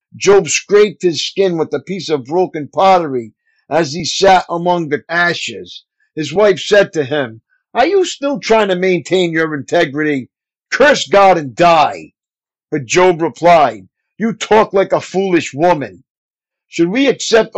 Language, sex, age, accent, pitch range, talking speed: English, male, 50-69, American, 145-195 Hz, 155 wpm